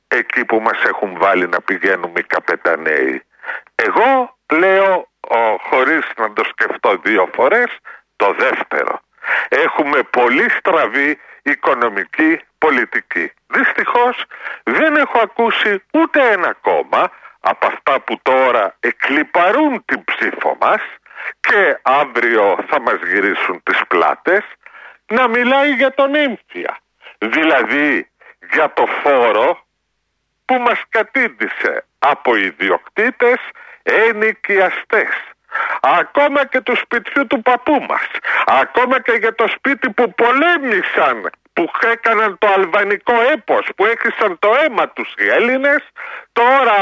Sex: male